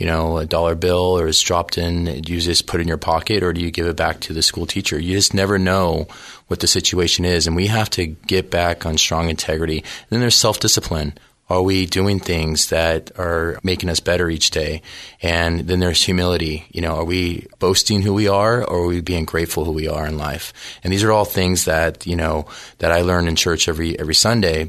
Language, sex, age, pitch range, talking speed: English, male, 30-49, 80-95 Hz, 235 wpm